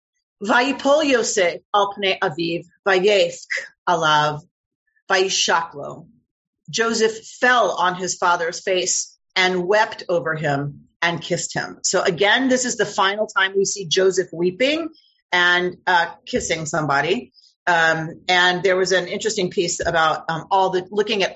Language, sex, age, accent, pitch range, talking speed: English, female, 40-59, American, 175-235 Hz, 125 wpm